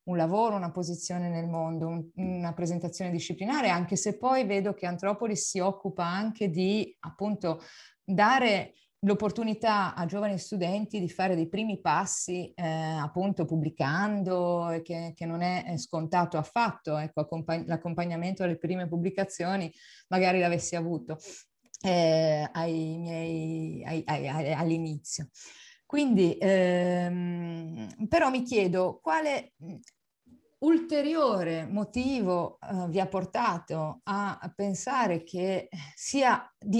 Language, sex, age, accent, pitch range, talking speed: Italian, female, 30-49, native, 170-205 Hz, 120 wpm